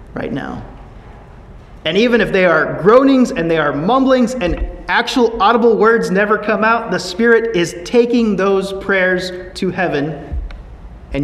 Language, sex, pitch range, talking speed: English, male, 135-185 Hz, 150 wpm